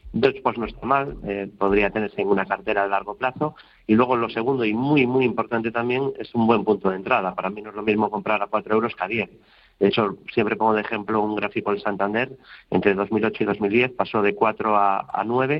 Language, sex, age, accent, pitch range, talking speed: Spanish, male, 40-59, Spanish, 100-125 Hz, 230 wpm